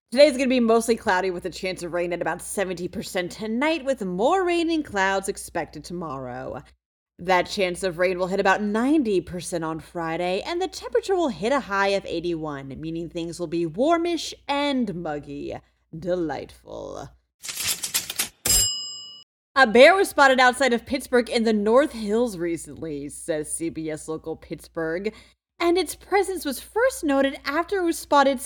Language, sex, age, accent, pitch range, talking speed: English, female, 30-49, American, 175-275 Hz, 160 wpm